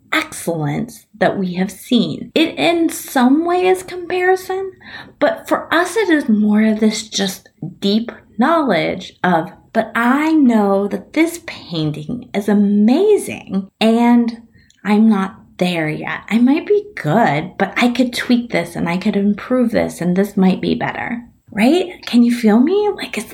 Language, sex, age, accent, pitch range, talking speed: English, female, 30-49, American, 190-255 Hz, 160 wpm